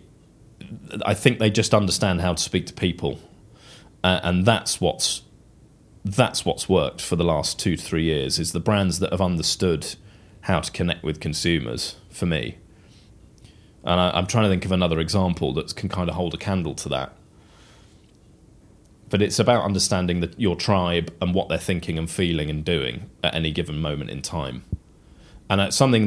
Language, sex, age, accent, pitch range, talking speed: English, male, 30-49, British, 85-105 Hz, 175 wpm